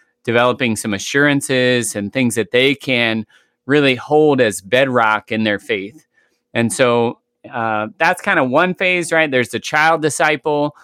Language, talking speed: English, 155 wpm